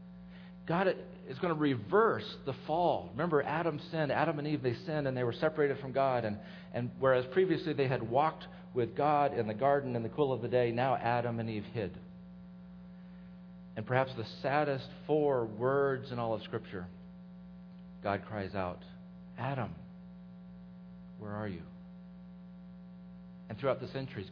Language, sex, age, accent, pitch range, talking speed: English, male, 50-69, American, 110-180 Hz, 165 wpm